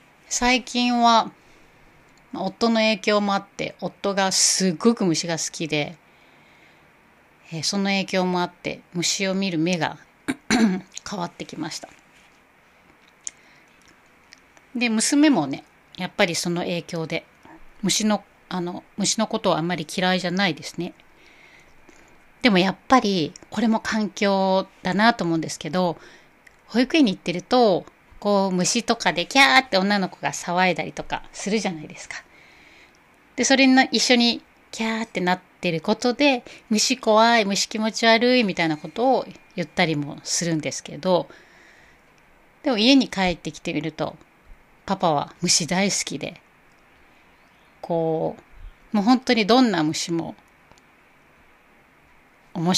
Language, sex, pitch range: Japanese, female, 175-225 Hz